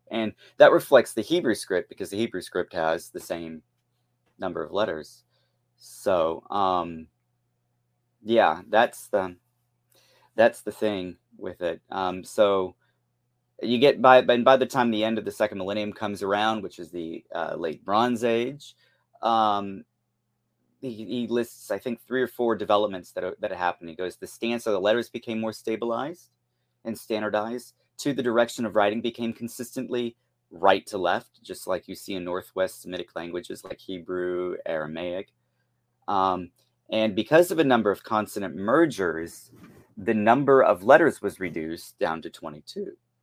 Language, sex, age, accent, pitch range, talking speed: English, male, 30-49, American, 85-120 Hz, 160 wpm